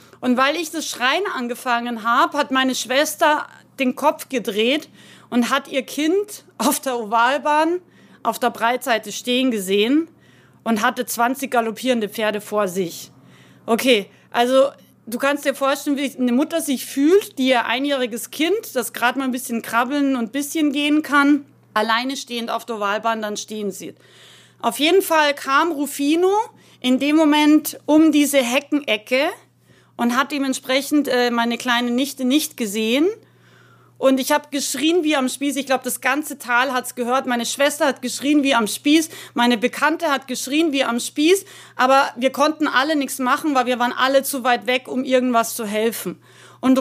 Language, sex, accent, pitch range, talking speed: German, female, German, 240-290 Hz, 170 wpm